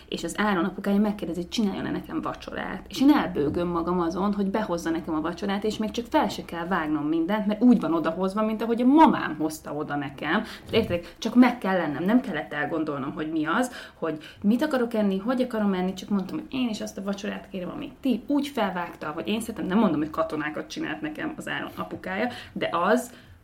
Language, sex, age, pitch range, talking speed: Hungarian, female, 30-49, 170-230 Hz, 210 wpm